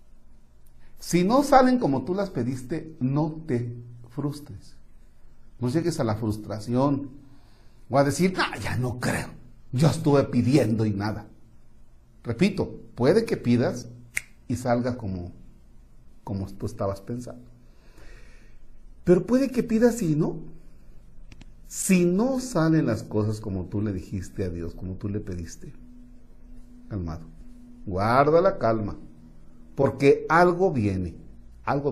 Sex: male